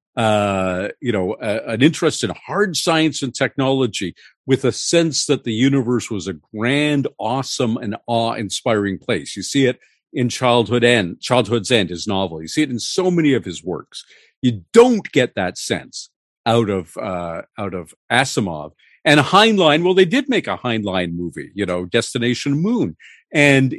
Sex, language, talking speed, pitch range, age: male, English, 170 wpm, 105-145 Hz, 50-69